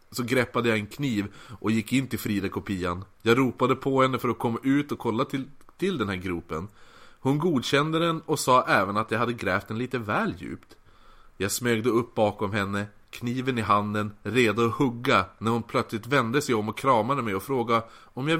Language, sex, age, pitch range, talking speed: Swedish, male, 30-49, 105-140 Hz, 205 wpm